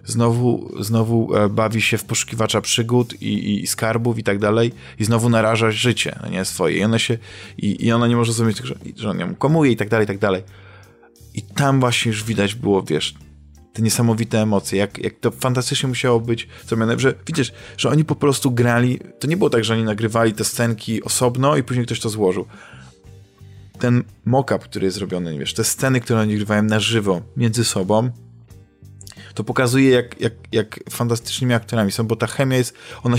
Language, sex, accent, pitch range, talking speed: Polish, male, native, 100-120 Hz, 190 wpm